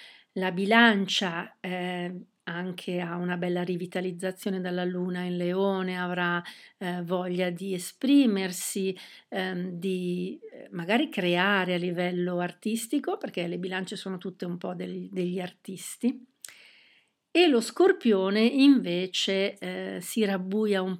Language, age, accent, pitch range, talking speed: Italian, 50-69, native, 180-210 Hz, 115 wpm